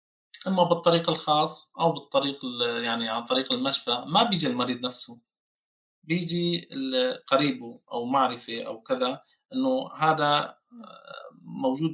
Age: 20-39